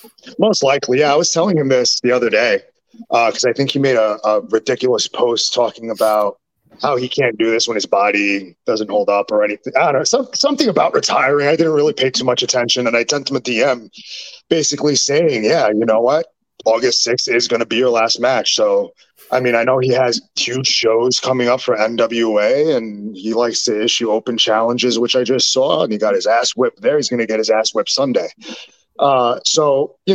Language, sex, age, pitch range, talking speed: English, male, 30-49, 115-140 Hz, 225 wpm